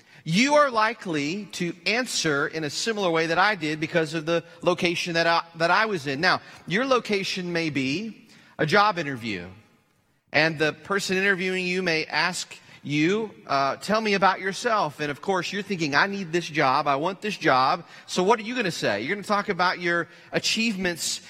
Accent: American